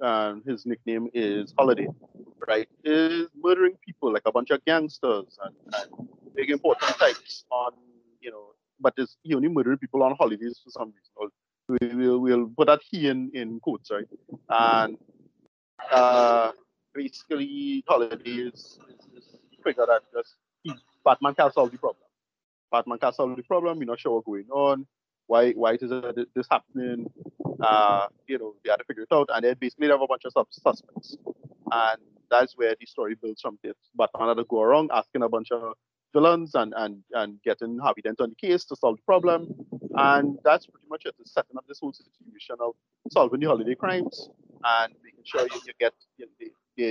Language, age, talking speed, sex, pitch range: English, 30-49, 190 wpm, male, 115-150 Hz